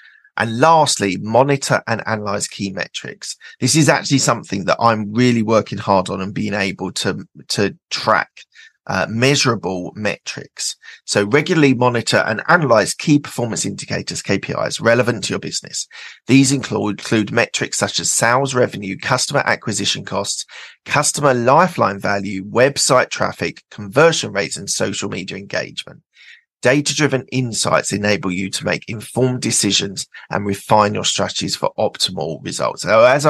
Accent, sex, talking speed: British, male, 140 wpm